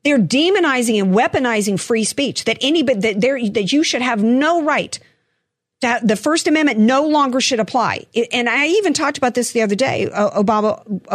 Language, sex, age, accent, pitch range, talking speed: English, female, 50-69, American, 195-255 Hz, 185 wpm